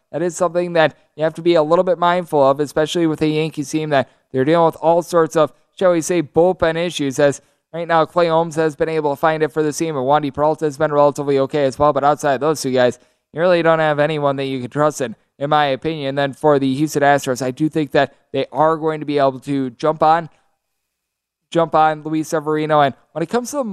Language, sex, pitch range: English, male, 140-170 Hz